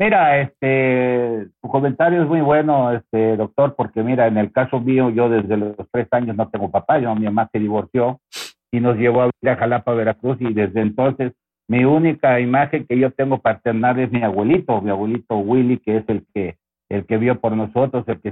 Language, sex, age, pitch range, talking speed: Spanish, male, 60-79, 105-130 Hz, 190 wpm